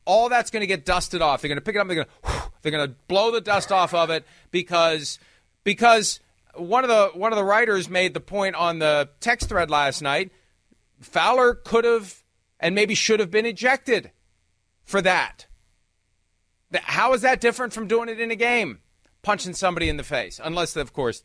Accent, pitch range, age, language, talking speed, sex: American, 120-180 Hz, 40-59, English, 215 wpm, male